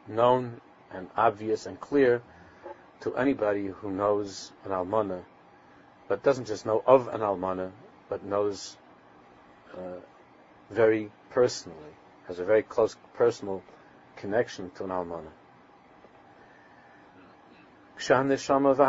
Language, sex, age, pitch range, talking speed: English, male, 50-69, 100-135 Hz, 105 wpm